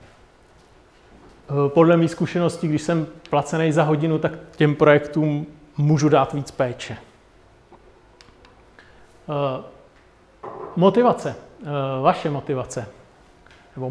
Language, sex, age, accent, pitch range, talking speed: Czech, male, 40-59, native, 145-165 Hz, 80 wpm